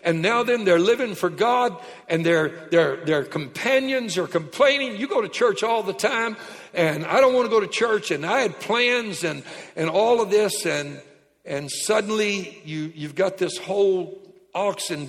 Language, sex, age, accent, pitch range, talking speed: English, male, 60-79, American, 170-225 Hz, 185 wpm